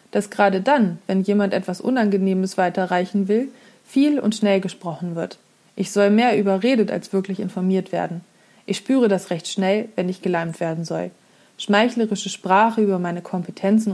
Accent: German